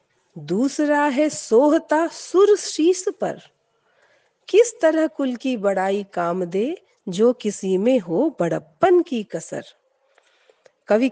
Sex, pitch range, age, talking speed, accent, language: female, 220-345 Hz, 50-69, 110 wpm, native, Hindi